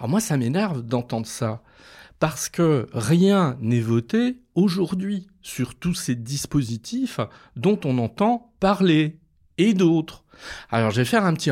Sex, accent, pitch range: male, French, 115-185 Hz